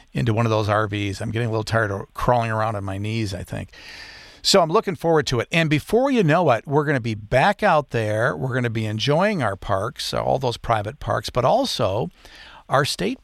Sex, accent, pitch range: male, American, 110-140 Hz